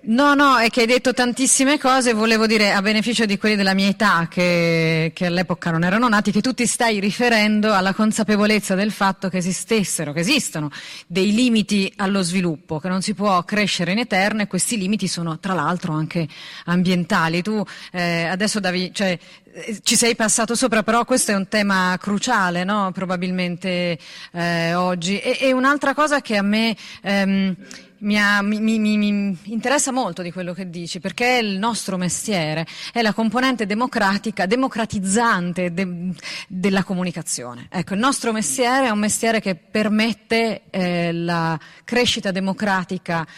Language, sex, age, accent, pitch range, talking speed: Italian, female, 30-49, native, 180-225 Hz, 165 wpm